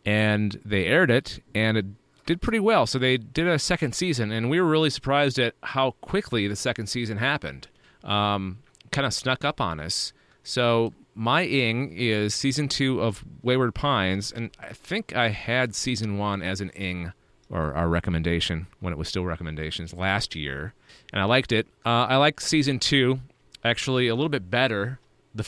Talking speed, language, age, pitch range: 185 wpm, English, 30-49, 105-140 Hz